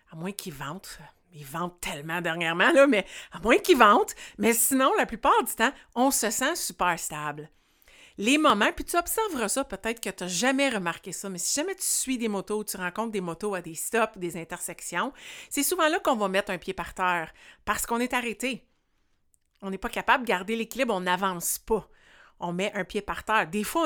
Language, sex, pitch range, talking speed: French, female, 180-245 Hz, 215 wpm